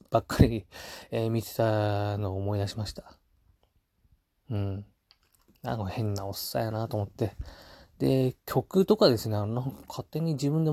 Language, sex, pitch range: Japanese, male, 100-125 Hz